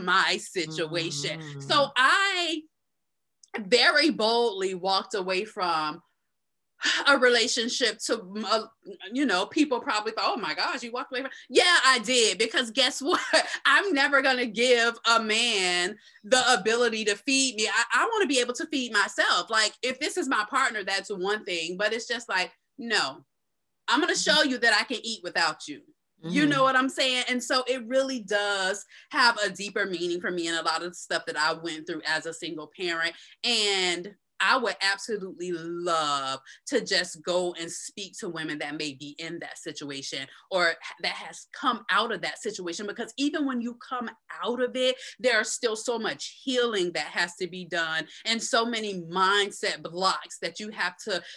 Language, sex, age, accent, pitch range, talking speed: English, female, 20-39, American, 180-255 Hz, 185 wpm